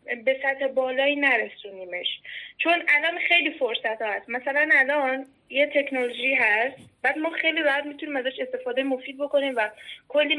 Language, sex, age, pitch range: Persian, female, 10-29, 245-290 Hz